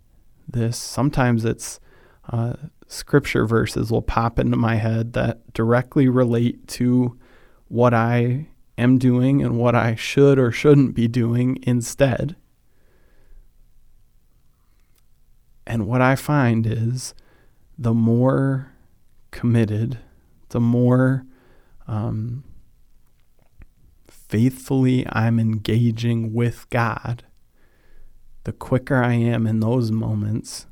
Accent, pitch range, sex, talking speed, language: American, 115-130 Hz, male, 100 wpm, English